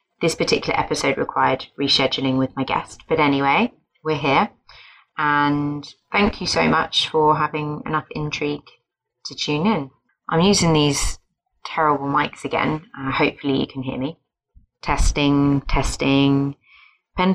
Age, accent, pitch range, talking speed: 20-39, British, 140-165 Hz, 135 wpm